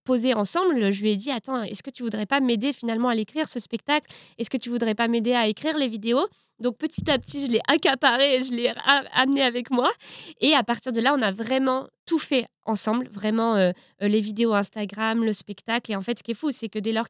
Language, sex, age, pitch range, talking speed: French, female, 20-39, 210-245 Hz, 245 wpm